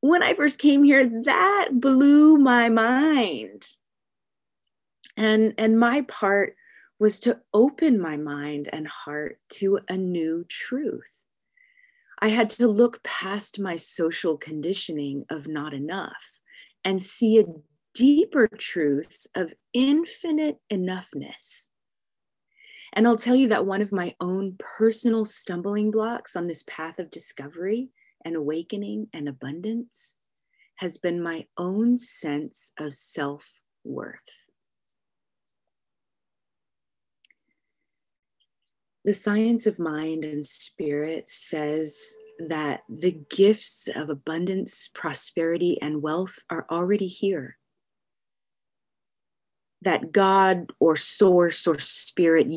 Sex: female